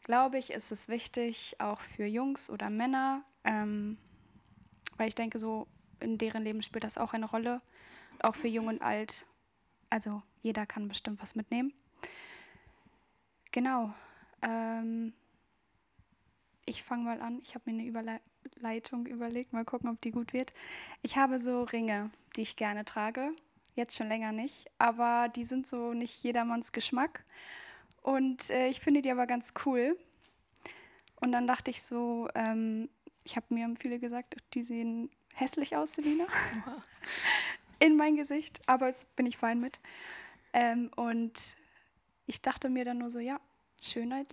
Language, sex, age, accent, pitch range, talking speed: German, female, 10-29, German, 225-255 Hz, 155 wpm